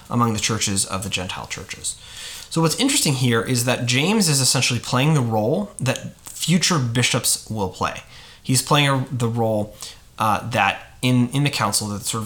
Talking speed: 175 wpm